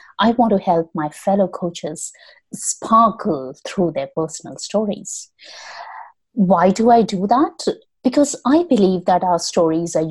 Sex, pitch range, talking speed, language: female, 175-265 Hz, 140 wpm, English